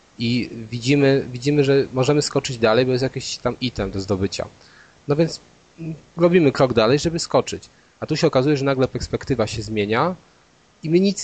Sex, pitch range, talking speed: male, 110-130 Hz, 175 wpm